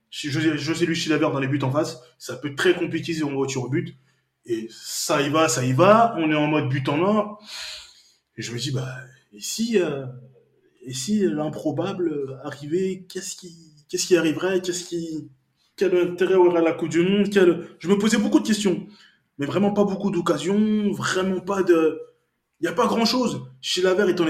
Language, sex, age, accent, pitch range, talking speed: French, male, 20-39, French, 150-205 Hz, 215 wpm